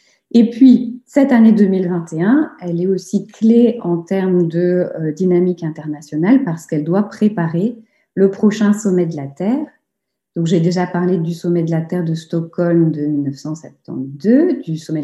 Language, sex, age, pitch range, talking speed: French, female, 40-59, 165-200 Hz, 155 wpm